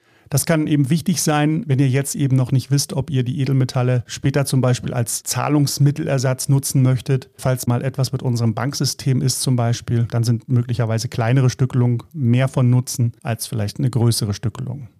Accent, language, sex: German, German, male